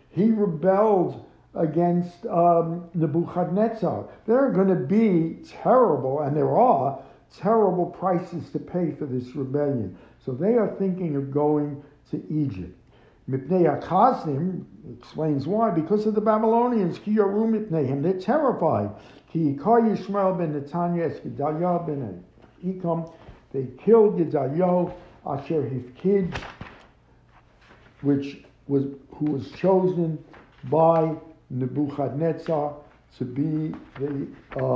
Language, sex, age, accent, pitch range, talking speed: English, male, 60-79, American, 140-185 Hz, 100 wpm